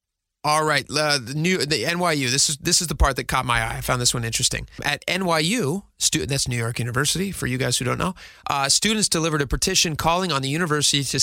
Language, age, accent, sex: English, 30-49, American, male